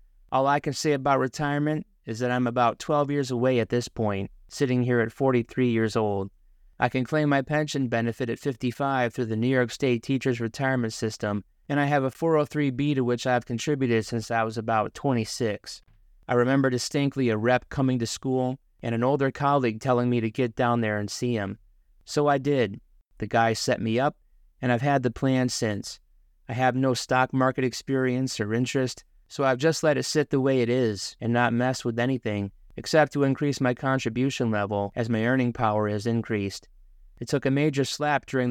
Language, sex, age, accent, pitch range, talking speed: English, male, 30-49, American, 115-135 Hz, 200 wpm